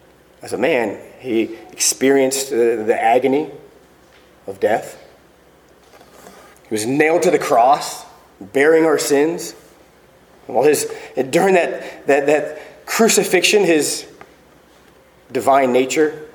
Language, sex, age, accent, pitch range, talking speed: English, male, 30-49, American, 130-195 Hz, 105 wpm